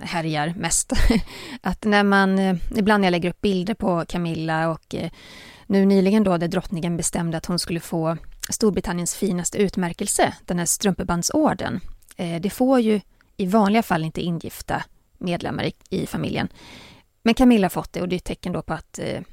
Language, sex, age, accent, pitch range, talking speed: Swedish, female, 30-49, native, 175-225 Hz, 170 wpm